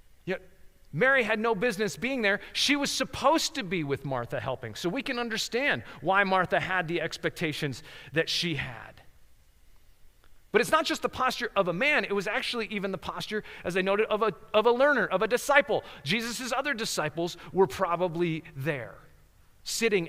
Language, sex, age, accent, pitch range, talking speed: English, male, 30-49, American, 160-225 Hz, 175 wpm